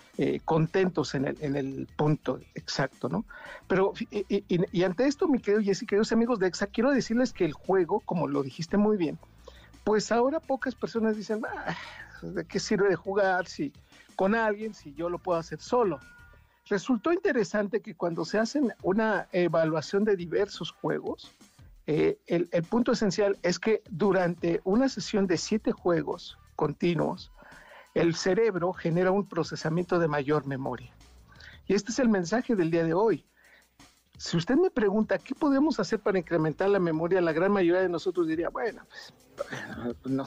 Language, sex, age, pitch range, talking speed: Spanish, male, 50-69, 160-215 Hz, 170 wpm